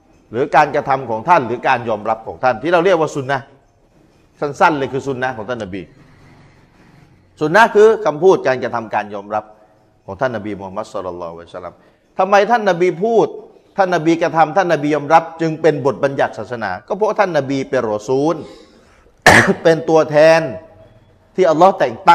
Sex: male